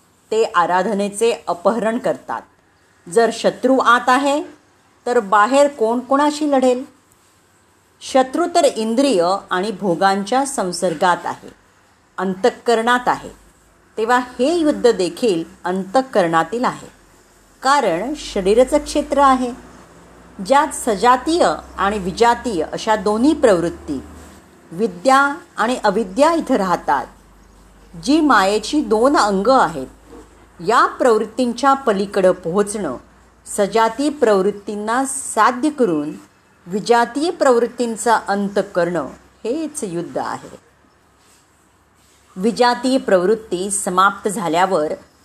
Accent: native